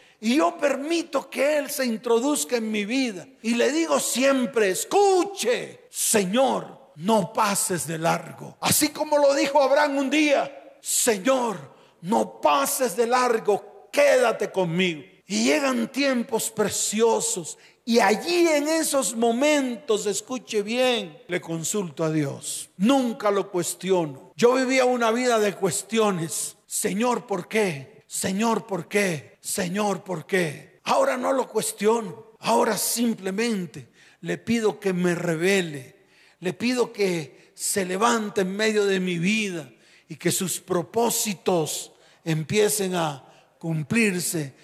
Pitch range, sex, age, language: 185-270 Hz, male, 40-59, Spanish